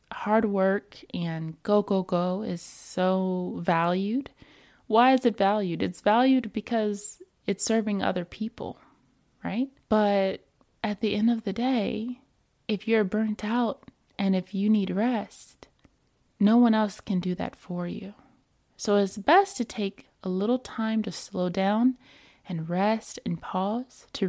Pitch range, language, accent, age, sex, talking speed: 180-220 Hz, English, American, 20-39, female, 150 wpm